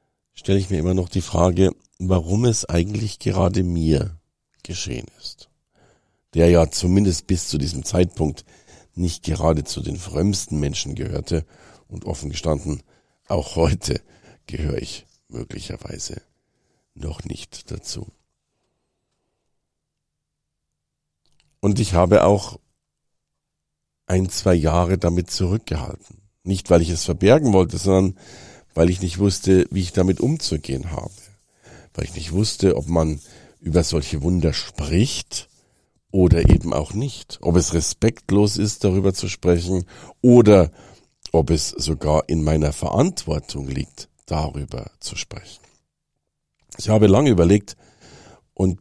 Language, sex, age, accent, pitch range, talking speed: German, male, 50-69, German, 80-100 Hz, 125 wpm